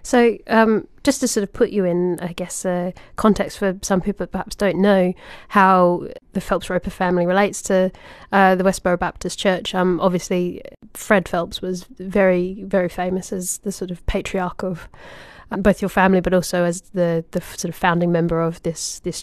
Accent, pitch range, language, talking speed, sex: British, 175-200 Hz, English, 190 wpm, female